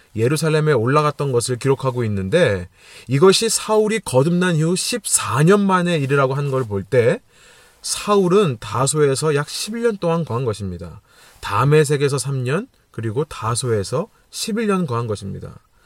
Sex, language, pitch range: male, Korean, 120-185 Hz